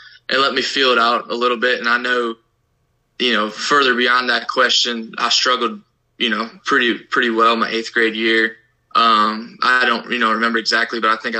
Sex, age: male, 20-39